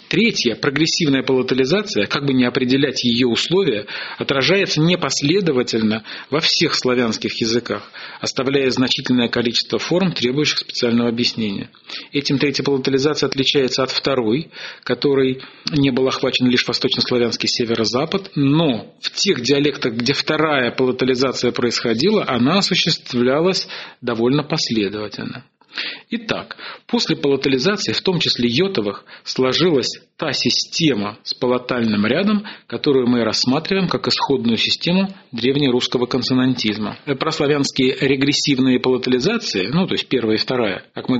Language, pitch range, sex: Russian, 120-145 Hz, male